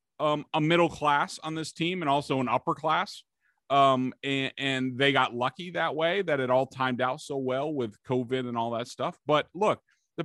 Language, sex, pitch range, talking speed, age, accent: English, male, 130-170 Hz, 210 wpm, 30-49, American